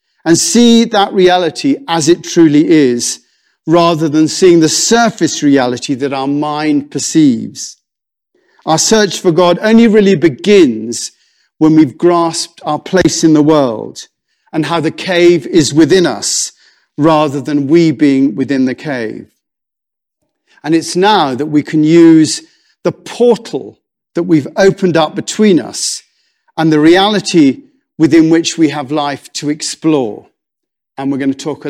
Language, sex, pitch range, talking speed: English, male, 145-195 Hz, 150 wpm